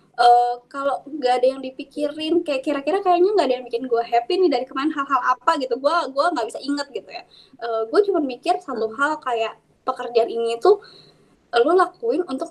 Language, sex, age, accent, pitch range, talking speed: Indonesian, female, 20-39, native, 235-320 Hz, 195 wpm